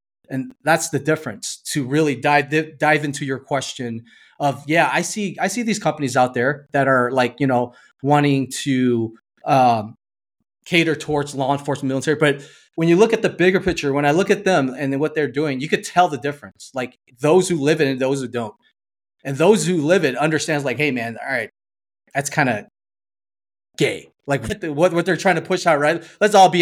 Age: 30-49